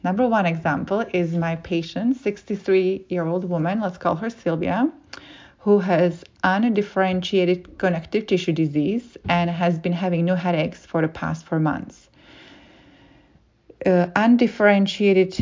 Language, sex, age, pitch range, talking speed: English, female, 40-59, 165-195 Hz, 120 wpm